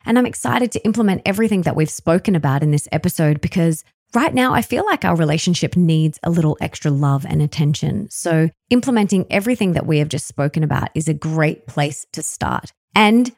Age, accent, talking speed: 20-39, Australian, 195 wpm